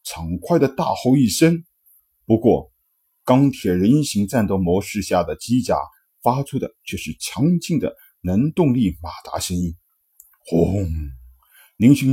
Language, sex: Chinese, male